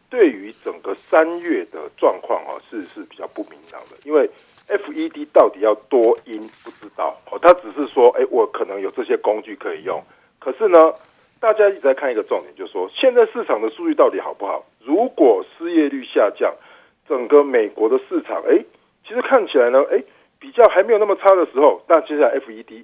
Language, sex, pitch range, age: Chinese, male, 275-460 Hz, 50-69